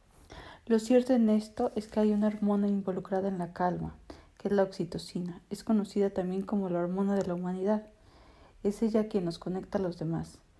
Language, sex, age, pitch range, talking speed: Spanish, female, 40-59, 185-210 Hz, 195 wpm